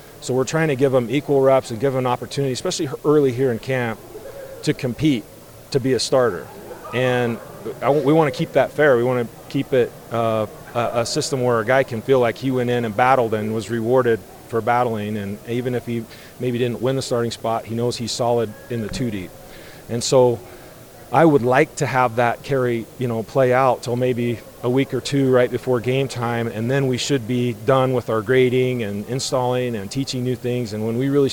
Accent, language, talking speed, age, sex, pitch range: American, English, 220 wpm, 40-59, male, 115-135 Hz